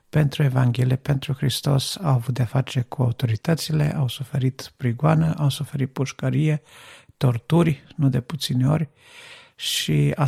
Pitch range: 130-150 Hz